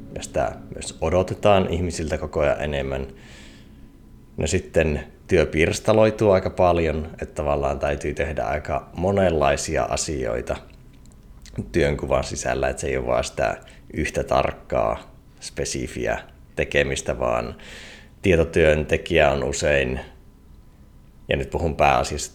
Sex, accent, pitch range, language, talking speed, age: male, native, 70-85 Hz, Finnish, 105 wpm, 30-49